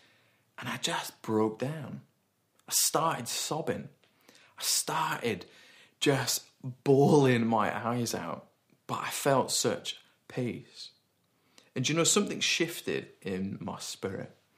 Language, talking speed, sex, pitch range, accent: English, 115 wpm, male, 115-135 Hz, British